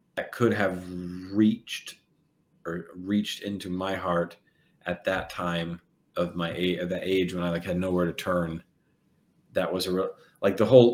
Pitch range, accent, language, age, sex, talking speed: 90-105 Hz, American, English, 30-49, male, 175 wpm